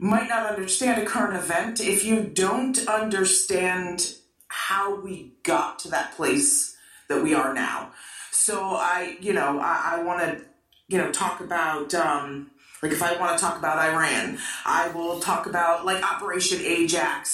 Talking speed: 165 wpm